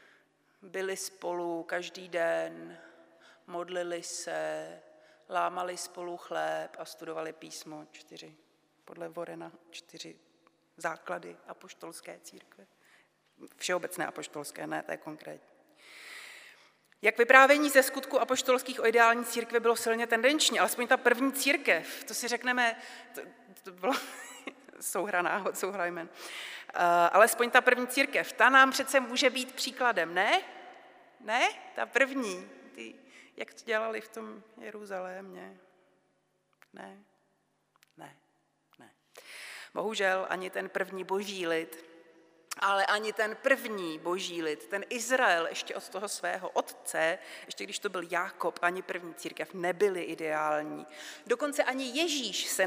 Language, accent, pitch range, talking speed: Czech, native, 175-245 Hz, 125 wpm